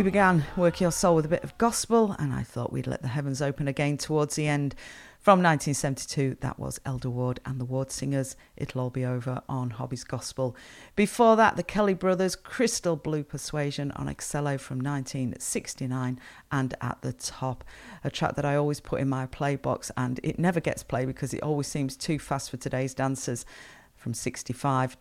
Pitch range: 130-165 Hz